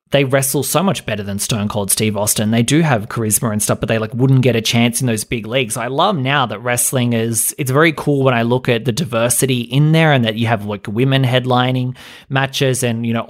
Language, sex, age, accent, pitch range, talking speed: English, male, 20-39, Australian, 115-135 Hz, 250 wpm